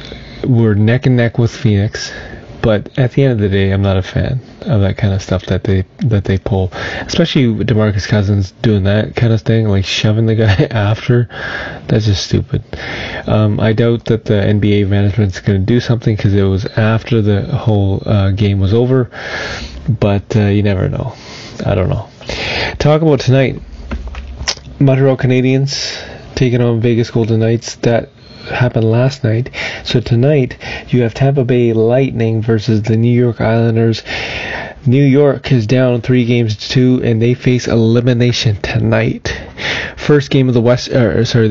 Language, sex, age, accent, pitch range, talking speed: English, male, 30-49, American, 105-125 Hz, 170 wpm